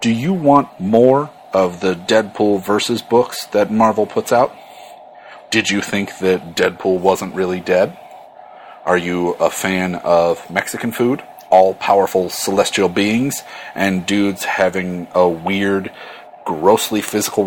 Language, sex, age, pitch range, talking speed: English, male, 40-59, 90-125 Hz, 130 wpm